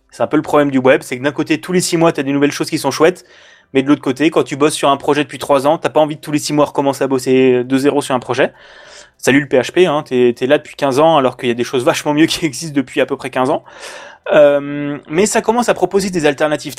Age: 20-39